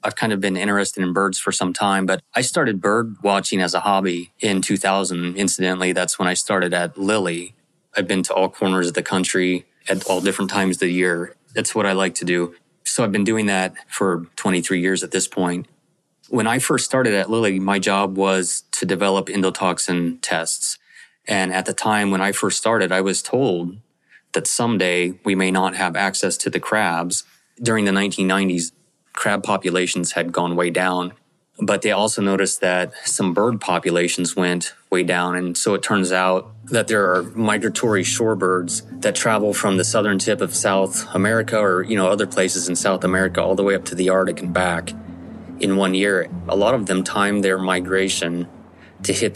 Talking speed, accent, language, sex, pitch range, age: 195 wpm, American, English, male, 90-100 Hz, 20-39